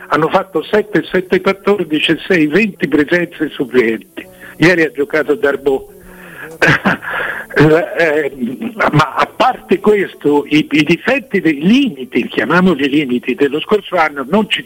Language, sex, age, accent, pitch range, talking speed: Italian, male, 60-79, native, 150-210 Hz, 130 wpm